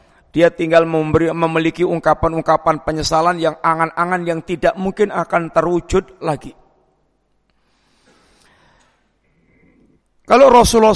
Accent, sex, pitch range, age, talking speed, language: native, male, 155-180 Hz, 50-69, 90 wpm, Indonesian